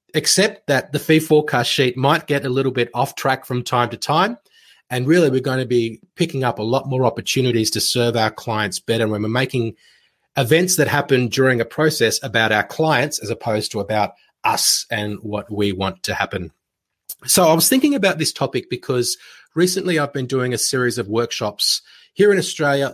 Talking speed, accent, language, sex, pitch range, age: 200 wpm, Australian, English, male, 110-140 Hz, 30-49